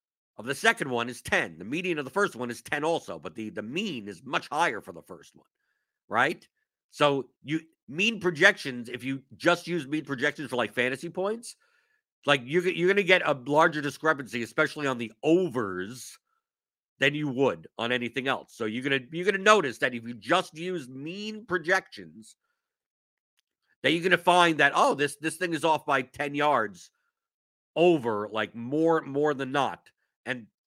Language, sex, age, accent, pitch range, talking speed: English, male, 50-69, American, 125-180 Hz, 190 wpm